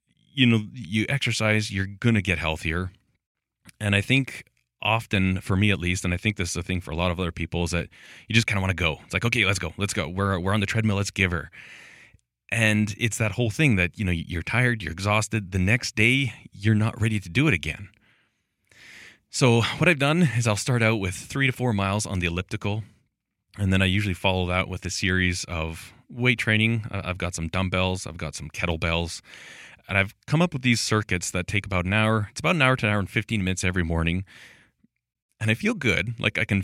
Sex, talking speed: male, 235 wpm